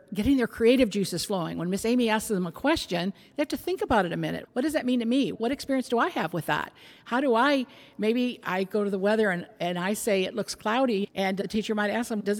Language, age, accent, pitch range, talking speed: English, 50-69, American, 185-235 Hz, 270 wpm